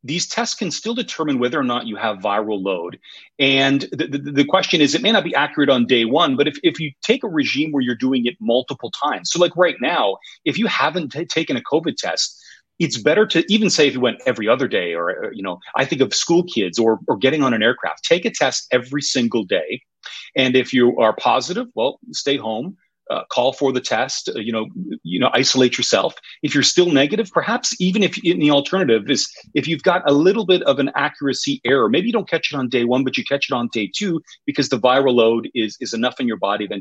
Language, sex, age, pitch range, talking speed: English, male, 30-49, 125-180 Hz, 245 wpm